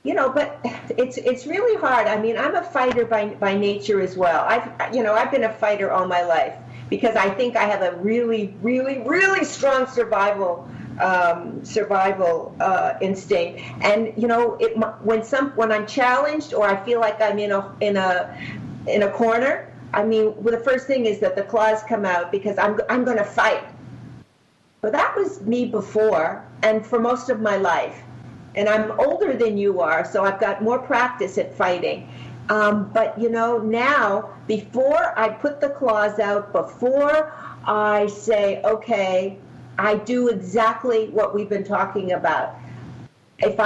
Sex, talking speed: female, 175 wpm